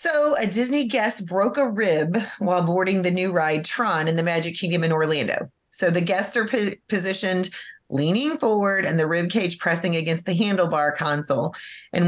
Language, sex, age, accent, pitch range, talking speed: English, female, 30-49, American, 165-200 Hz, 180 wpm